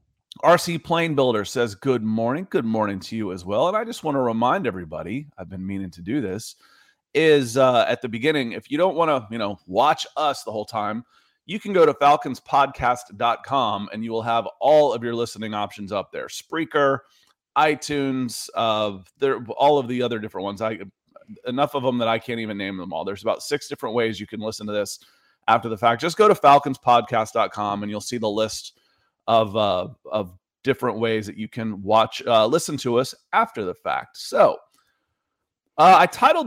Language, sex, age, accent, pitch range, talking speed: English, male, 30-49, American, 110-140 Hz, 200 wpm